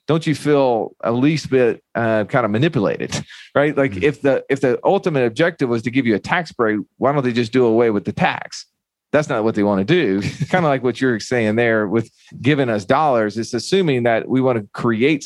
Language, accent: English, American